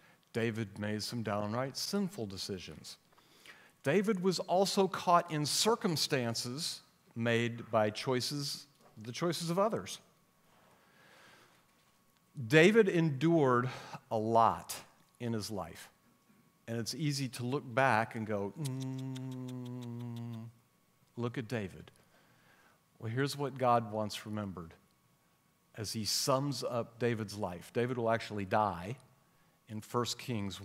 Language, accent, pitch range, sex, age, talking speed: English, American, 110-140 Hz, male, 50-69, 110 wpm